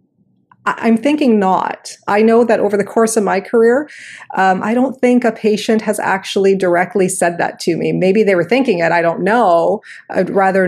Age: 30-49